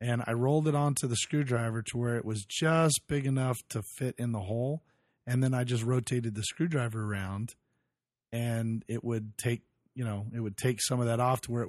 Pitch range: 115-140 Hz